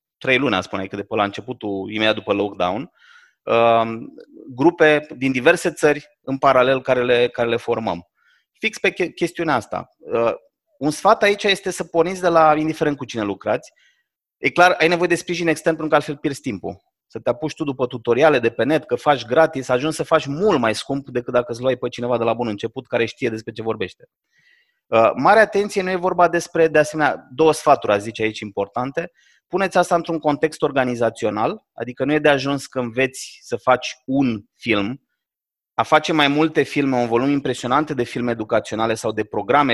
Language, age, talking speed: Romanian, 30-49, 195 wpm